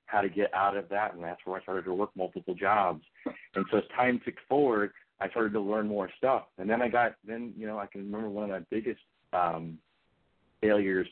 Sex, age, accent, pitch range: male, 40-59, American, 95-110 Hz